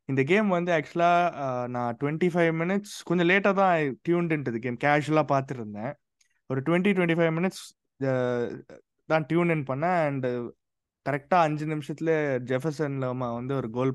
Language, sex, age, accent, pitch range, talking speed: Tamil, male, 20-39, native, 125-165 Hz, 140 wpm